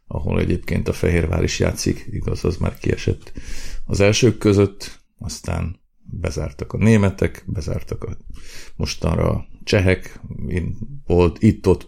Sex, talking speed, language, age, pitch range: male, 120 wpm, Hungarian, 50-69, 85-100 Hz